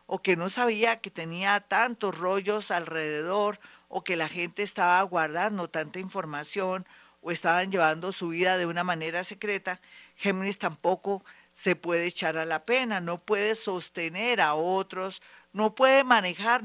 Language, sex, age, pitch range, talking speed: Spanish, female, 50-69, 175-210 Hz, 150 wpm